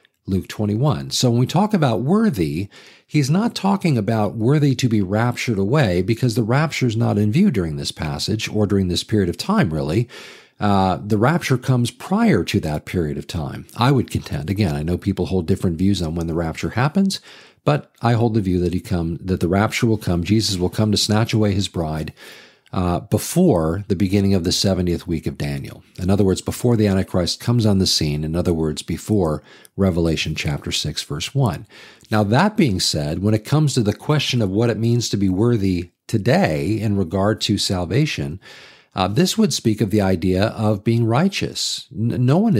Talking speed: 195 wpm